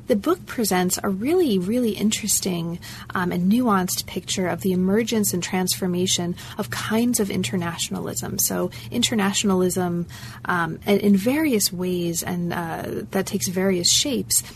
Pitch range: 175-205 Hz